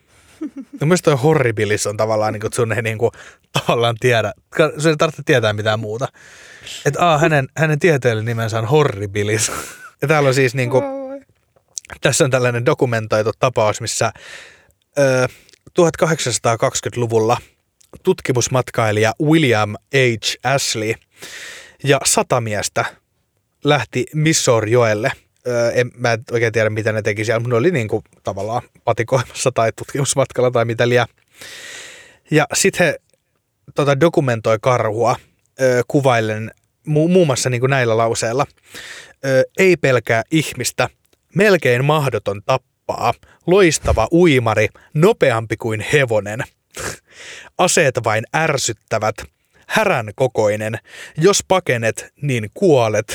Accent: native